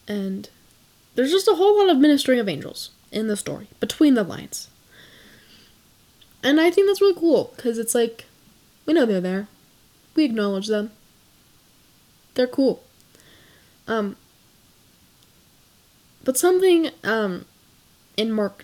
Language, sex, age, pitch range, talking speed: English, female, 10-29, 210-285 Hz, 130 wpm